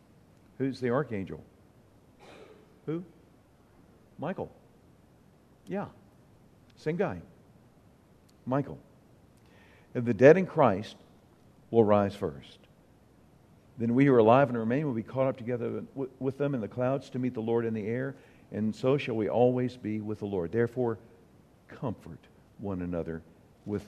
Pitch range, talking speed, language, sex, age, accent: 100-130 Hz, 140 wpm, English, male, 50-69, American